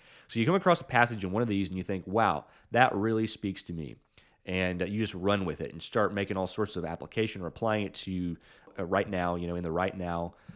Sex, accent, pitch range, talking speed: male, American, 85-110 Hz, 255 wpm